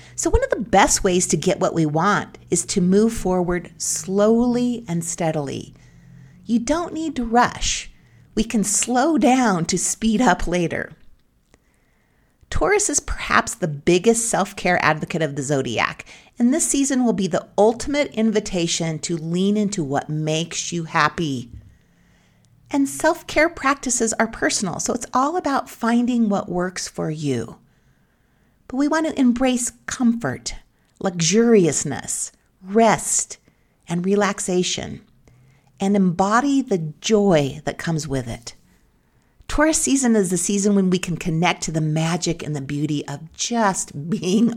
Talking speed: 145 wpm